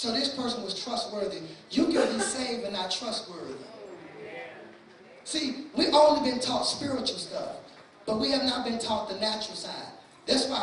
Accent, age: American, 20-39